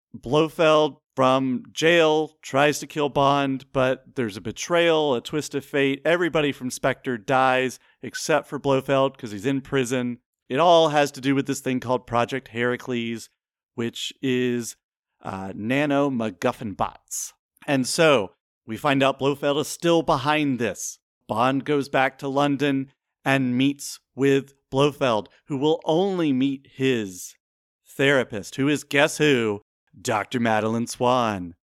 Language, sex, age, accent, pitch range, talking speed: English, male, 40-59, American, 125-150 Hz, 140 wpm